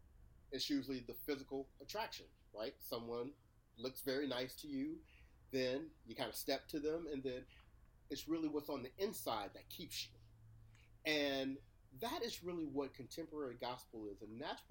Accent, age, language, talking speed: American, 40-59, English, 165 wpm